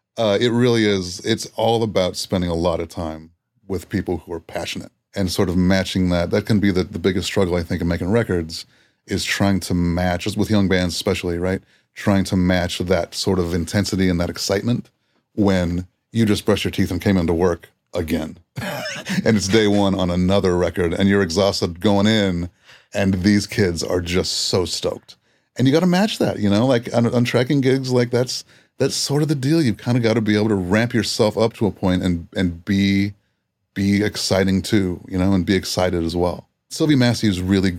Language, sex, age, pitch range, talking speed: English, male, 30-49, 90-110 Hz, 210 wpm